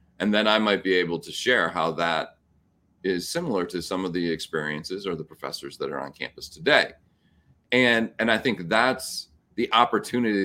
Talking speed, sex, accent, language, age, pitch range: 185 wpm, male, American, English, 40-59, 85-110 Hz